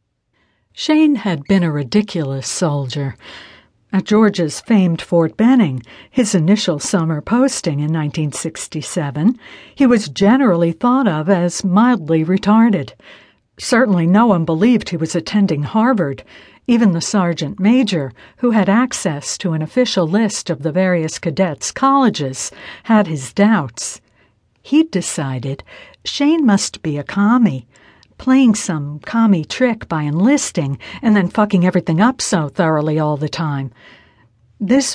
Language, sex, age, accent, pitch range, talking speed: English, female, 60-79, American, 155-220 Hz, 130 wpm